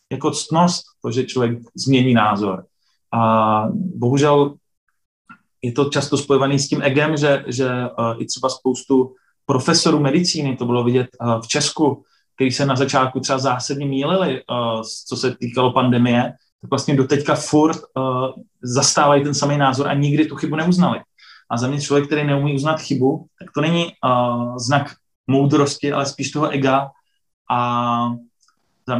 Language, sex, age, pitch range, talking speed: Slovak, male, 20-39, 130-150 Hz, 150 wpm